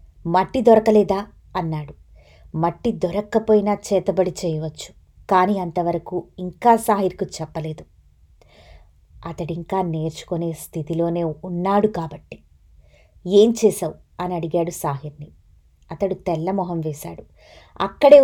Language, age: Telugu, 20-39